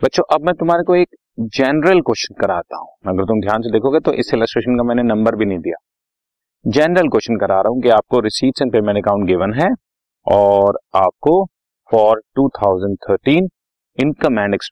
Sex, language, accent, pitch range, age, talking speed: male, Hindi, native, 100-115 Hz, 30-49, 55 wpm